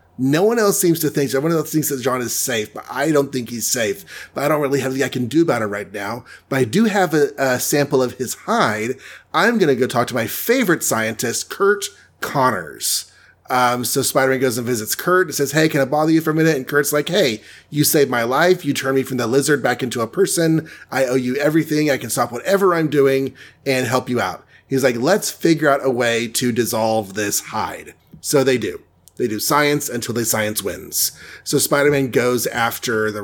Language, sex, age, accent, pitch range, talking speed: English, male, 30-49, American, 120-155 Hz, 230 wpm